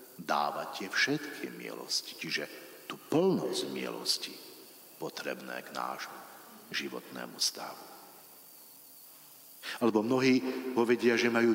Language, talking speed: Slovak, 95 wpm